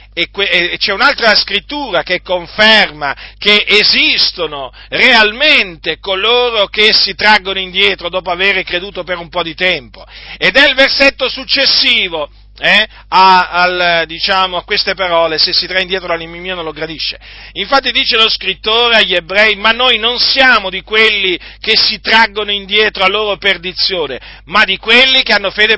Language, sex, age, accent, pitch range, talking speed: Italian, male, 40-59, native, 155-215 Hz, 155 wpm